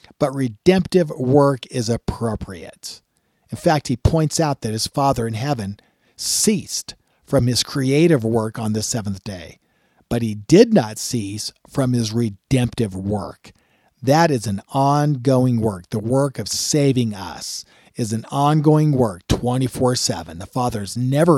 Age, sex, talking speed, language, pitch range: 50-69, male, 145 wpm, English, 110-145 Hz